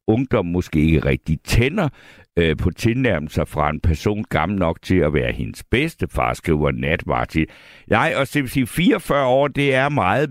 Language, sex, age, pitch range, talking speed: Danish, male, 60-79, 85-120 Hz, 165 wpm